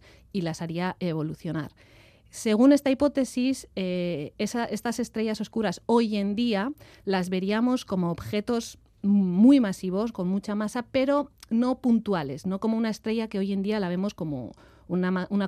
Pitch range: 185-235 Hz